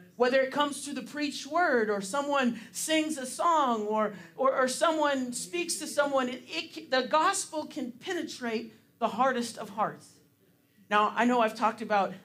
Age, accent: 40-59, American